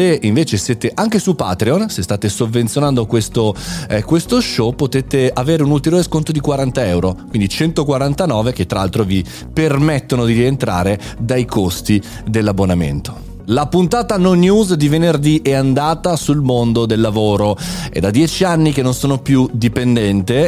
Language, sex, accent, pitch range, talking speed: Italian, male, native, 110-165 Hz, 160 wpm